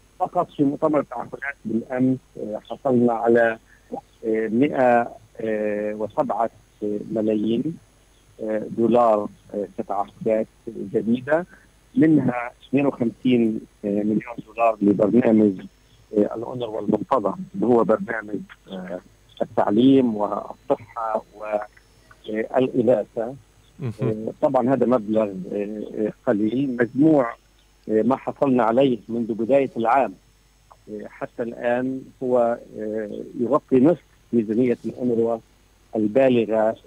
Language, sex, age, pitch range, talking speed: Arabic, male, 50-69, 110-135 Hz, 75 wpm